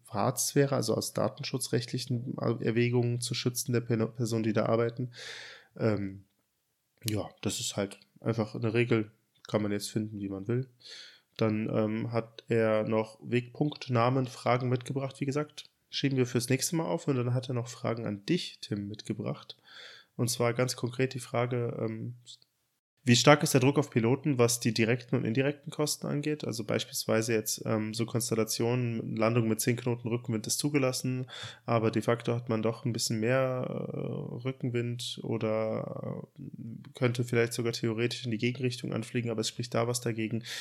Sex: male